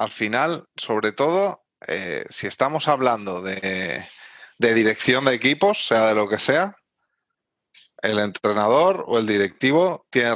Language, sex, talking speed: Spanish, male, 140 wpm